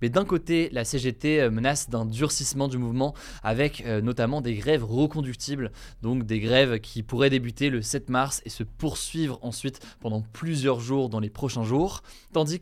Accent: French